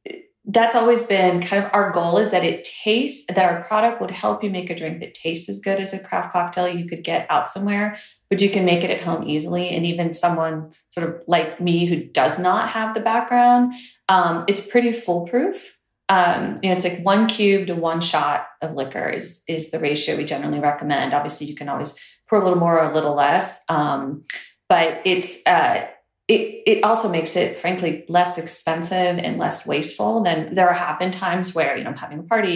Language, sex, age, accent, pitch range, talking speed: English, female, 30-49, American, 160-195 Hz, 215 wpm